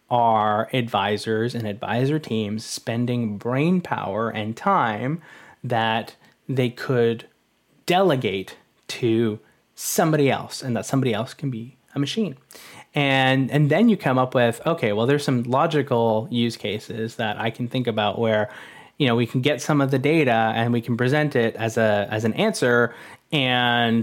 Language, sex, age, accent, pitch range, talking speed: English, male, 20-39, American, 115-140 Hz, 160 wpm